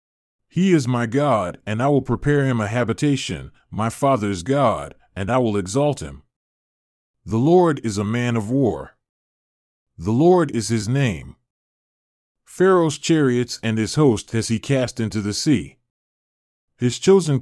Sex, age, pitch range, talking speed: male, 40-59, 105-140 Hz, 150 wpm